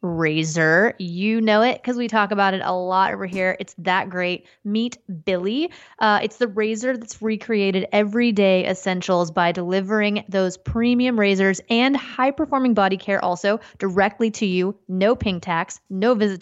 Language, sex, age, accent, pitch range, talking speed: English, female, 20-39, American, 185-230 Hz, 155 wpm